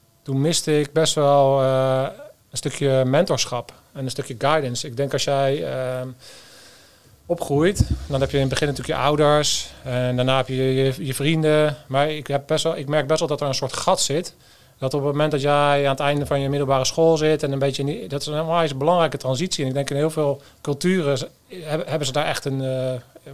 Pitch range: 130-150 Hz